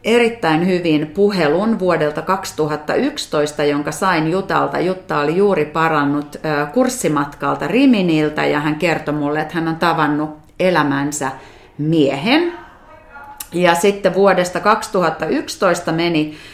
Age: 30-49